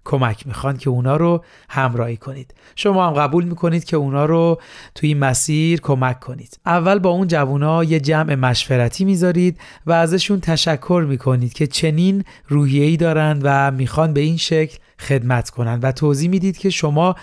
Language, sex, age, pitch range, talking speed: Persian, male, 40-59, 130-170 Hz, 165 wpm